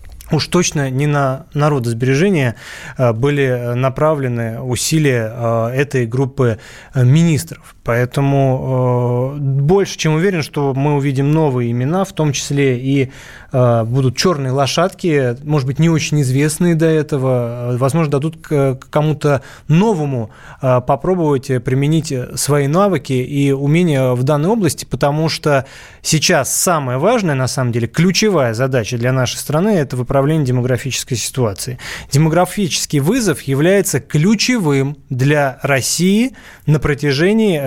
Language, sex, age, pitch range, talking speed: Russian, male, 20-39, 130-165 Hz, 120 wpm